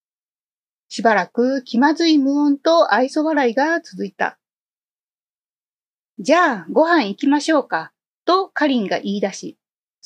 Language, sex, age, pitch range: Japanese, female, 30-49, 230-325 Hz